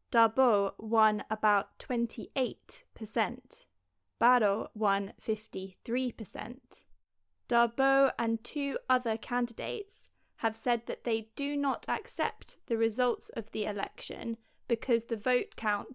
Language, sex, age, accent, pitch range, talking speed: English, female, 20-39, British, 215-255 Hz, 115 wpm